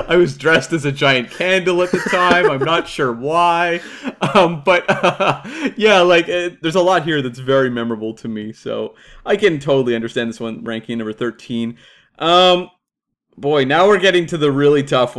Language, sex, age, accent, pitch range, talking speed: English, male, 30-49, American, 115-160 Hz, 185 wpm